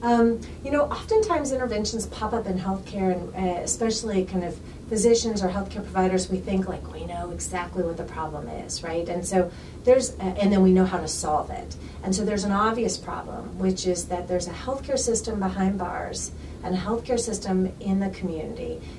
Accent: American